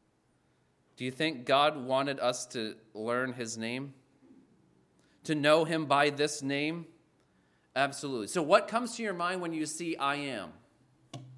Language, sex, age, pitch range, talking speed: English, male, 30-49, 115-170 Hz, 150 wpm